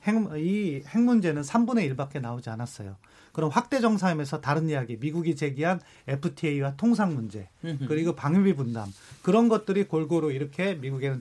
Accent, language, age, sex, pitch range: native, Korean, 30-49, male, 145-195 Hz